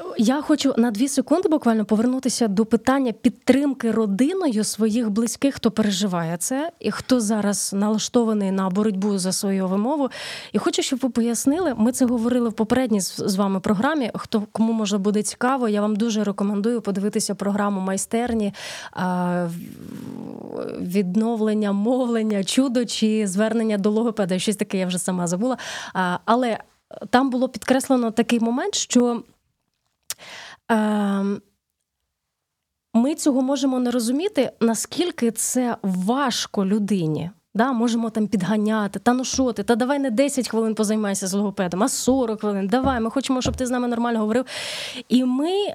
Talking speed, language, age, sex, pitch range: 145 wpm, Ukrainian, 20-39, female, 210-255 Hz